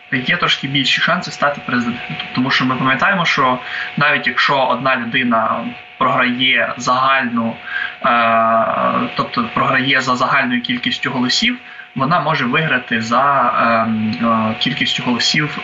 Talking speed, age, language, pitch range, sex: 110 wpm, 20-39, Ukrainian, 120-185 Hz, male